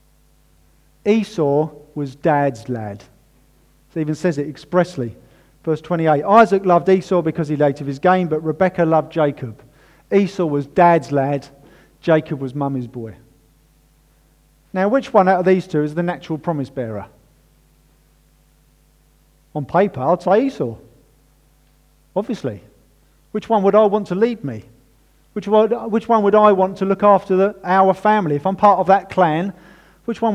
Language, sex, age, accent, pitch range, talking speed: English, male, 50-69, British, 145-190 Hz, 150 wpm